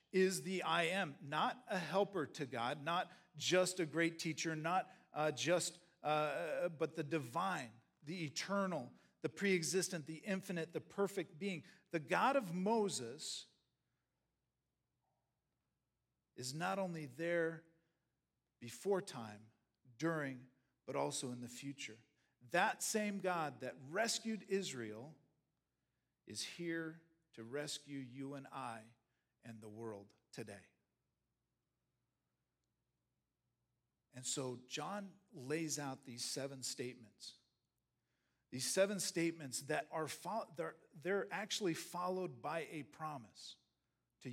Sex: male